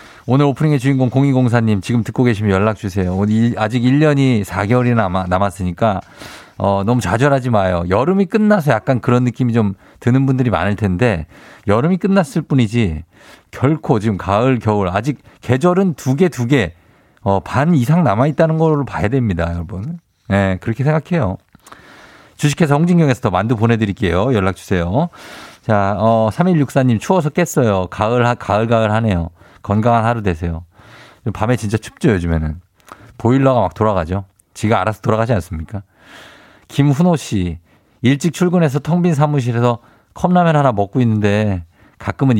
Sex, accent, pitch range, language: male, native, 100-135 Hz, Korean